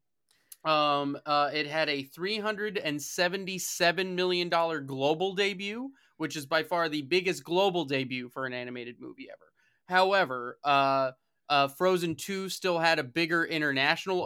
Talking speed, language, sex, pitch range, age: 140 wpm, English, male, 140-175 Hz, 20-39